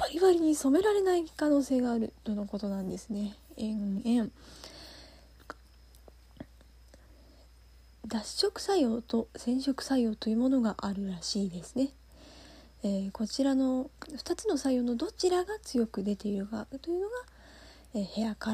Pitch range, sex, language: 210-280 Hz, female, Japanese